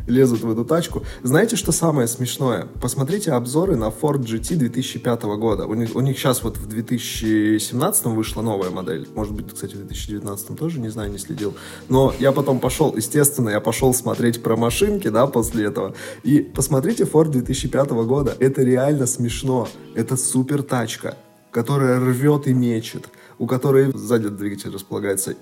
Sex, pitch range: male, 115-145 Hz